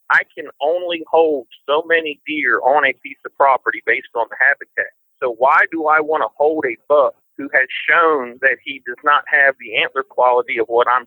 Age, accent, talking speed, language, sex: 50-69, American, 210 wpm, English, male